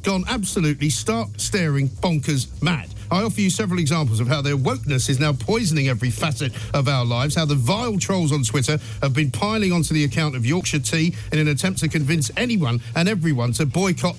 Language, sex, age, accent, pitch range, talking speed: English, male, 50-69, British, 135-185 Hz, 205 wpm